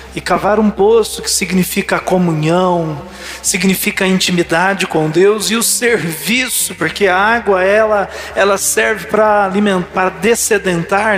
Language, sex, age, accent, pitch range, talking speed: Portuguese, male, 40-59, Brazilian, 175-205 Hz, 130 wpm